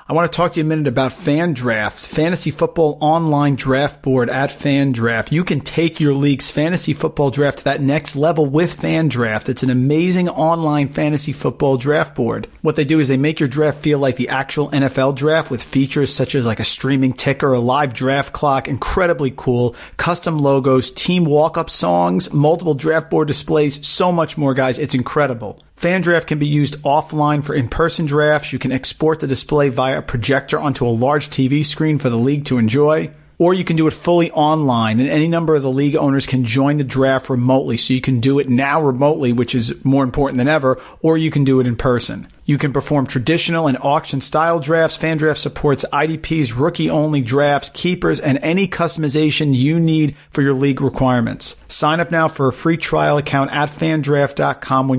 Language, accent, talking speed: English, American, 195 wpm